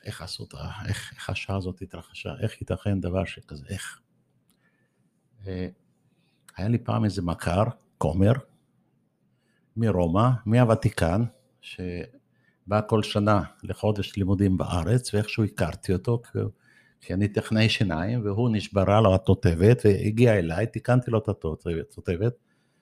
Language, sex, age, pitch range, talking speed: Hebrew, male, 60-79, 100-120 Hz, 120 wpm